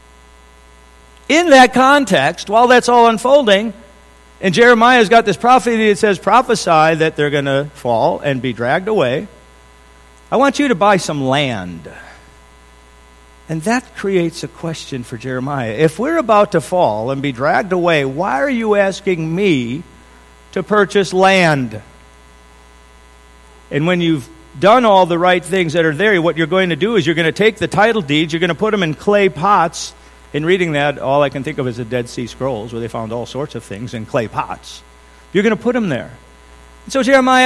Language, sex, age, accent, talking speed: English, male, 50-69, American, 190 wpm